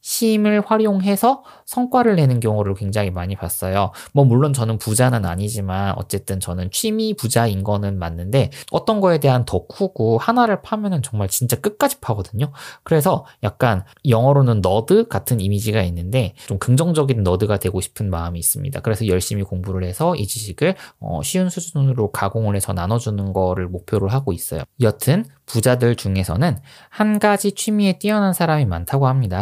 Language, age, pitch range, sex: Korean, 20-39, 100-155 Hz, male